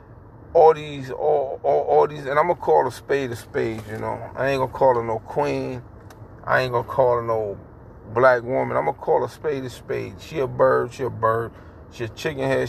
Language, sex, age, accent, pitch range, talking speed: English, male, 40-59, American, 110-145 Hz, 245 wpm